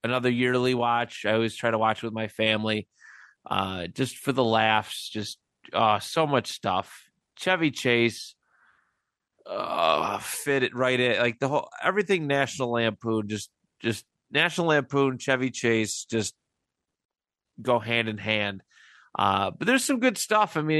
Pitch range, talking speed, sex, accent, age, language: 115-160 Hz, 155 wpm, male, American, 30-49, English